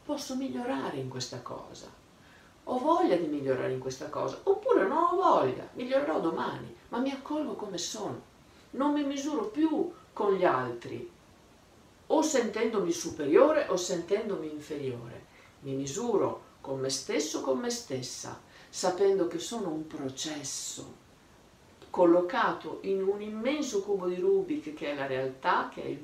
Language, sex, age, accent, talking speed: Italian, female, 50-69, native, 145 wpm